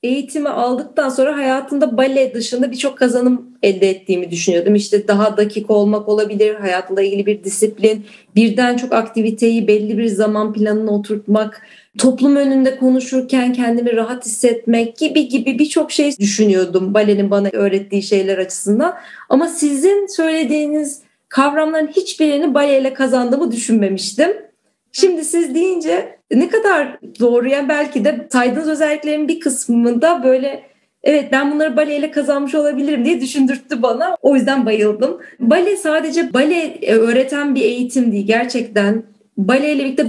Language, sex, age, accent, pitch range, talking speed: Turkish, female, 30-49, native, 220-295 Hz, 130 wpm